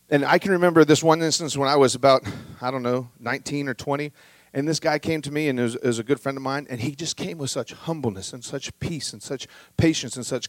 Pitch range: 115-160 Hz